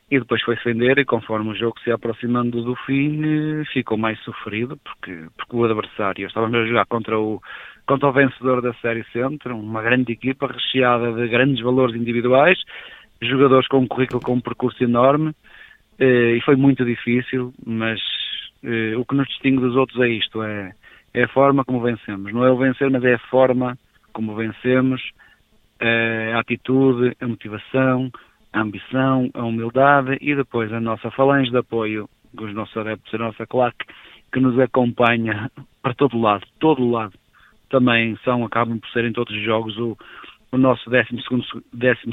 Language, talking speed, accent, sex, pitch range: Portuguese, 170 wpm, Portuguese, male, 115-130 Hz